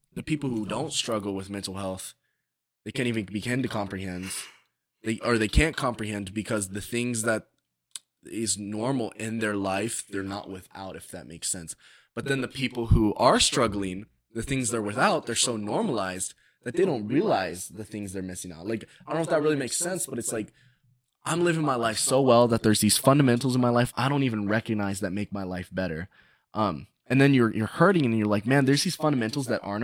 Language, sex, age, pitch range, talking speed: English, male, 20-39, 100-135 Hz, 215 wpm